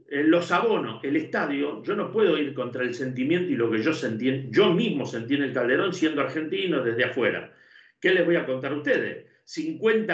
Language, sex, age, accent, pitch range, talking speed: Spanish, male, 50-69, Argentinian, 140-210 Hz, 200 wpm